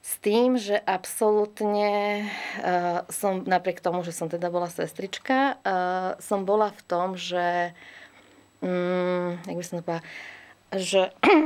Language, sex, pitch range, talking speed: Slovak, female, 175-215 Hz, 120 wpm